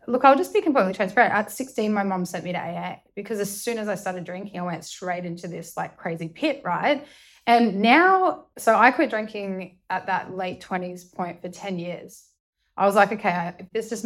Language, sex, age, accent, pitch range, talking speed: English, female, 10-29, Australian, 180-215 Hz, 220 wpm